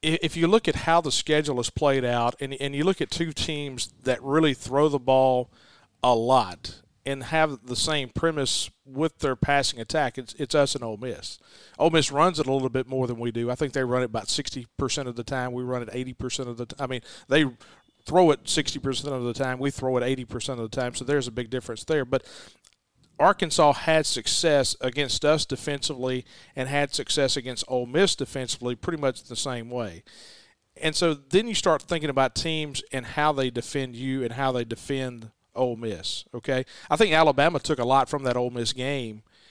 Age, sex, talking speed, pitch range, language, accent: 40-59, male, 210 wpm, 125-150 Hz, English, American